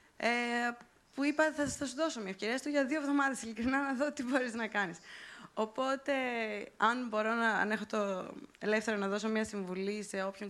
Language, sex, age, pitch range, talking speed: Greek, female, 20-39, 205-270 Hz, 165 wpm